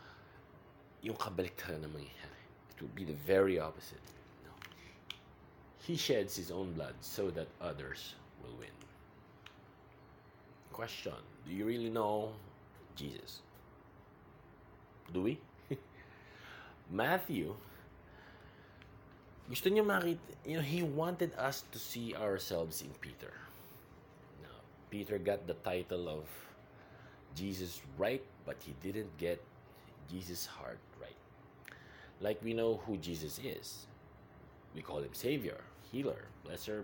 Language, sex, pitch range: English, male, 85-115 Hz